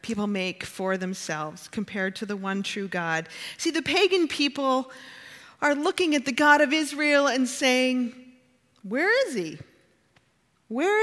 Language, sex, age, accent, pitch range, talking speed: English, female, 40-59, American, 195-270 Hz, 145 wpm